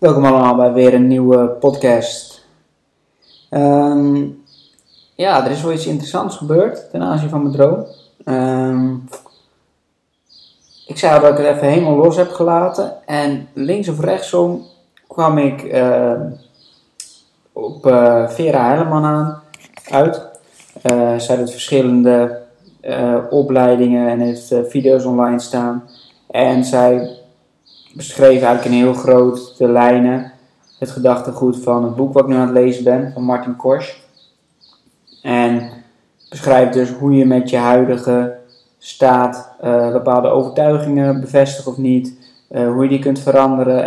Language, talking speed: Dutch, 135 wpm